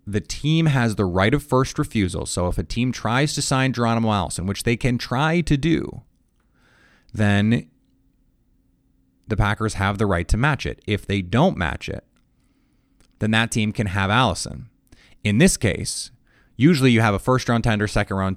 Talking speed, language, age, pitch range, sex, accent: 175 wpm, English, 30-49, 100-135 Hz, male, American